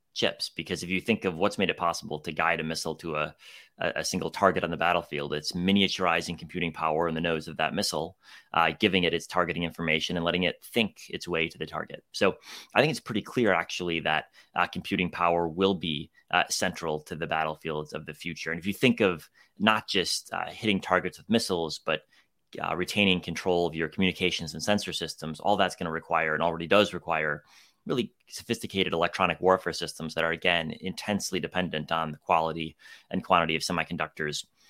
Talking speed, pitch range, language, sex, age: 200 wpm, 80-95 Hz, English, male, 30-49